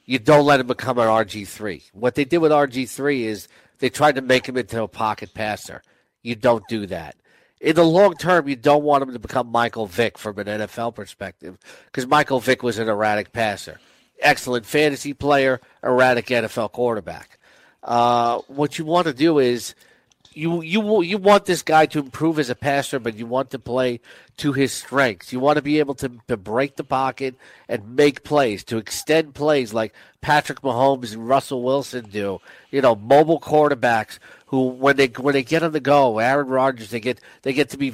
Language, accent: English, American